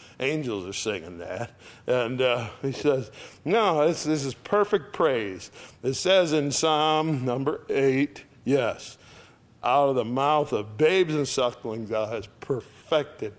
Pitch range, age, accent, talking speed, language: 115-140 Hz, 60-79, American, 145 wpm, English